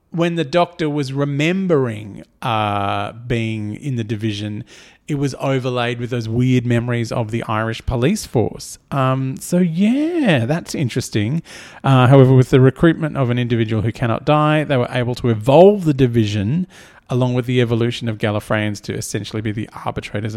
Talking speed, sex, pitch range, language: 165 wpm, male, 115-145 Hz, English